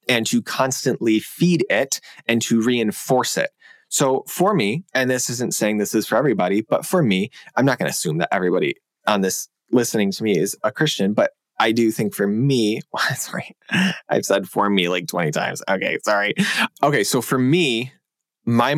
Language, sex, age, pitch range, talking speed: English, male, 20-39, 105-130 Hz, 190 wpm